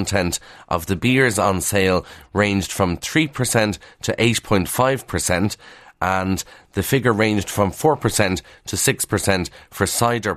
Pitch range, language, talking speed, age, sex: 95-115 Hz, English, 155 wpm, 30-49, male